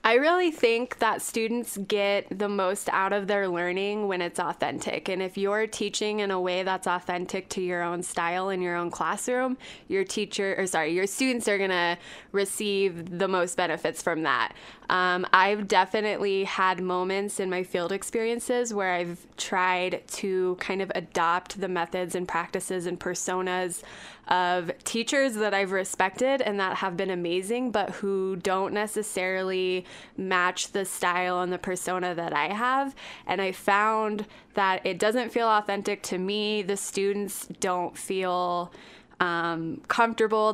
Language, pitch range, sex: English, 180-210 Hz, female